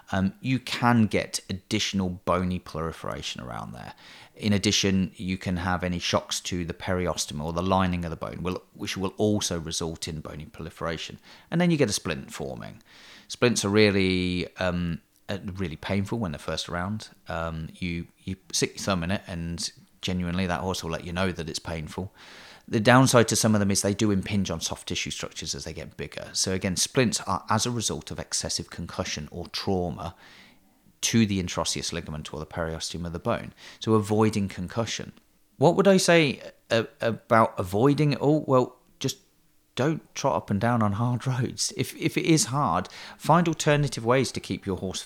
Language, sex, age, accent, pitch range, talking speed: English, male, 30-49, British, 85-115 Hz, 190 wpm